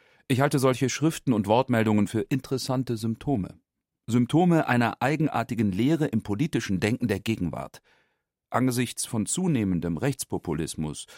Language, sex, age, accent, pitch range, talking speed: German, male, 40-59, German, 100-130 Hz, 120 wpm